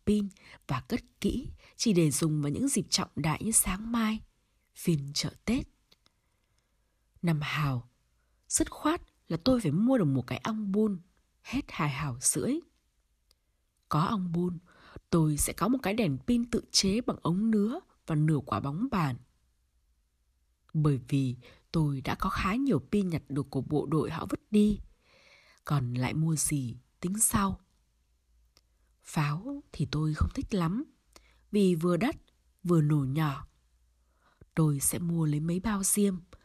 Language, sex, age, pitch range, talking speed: Vietnamese, female, 20-39, 140-210 Hz, 160 wpm